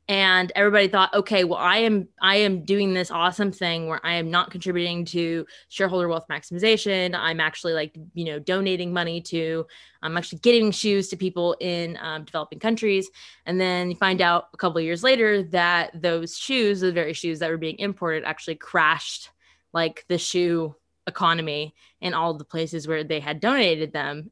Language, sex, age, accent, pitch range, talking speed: English, female, 20-39, American, 160-185 Hz, 185 wpm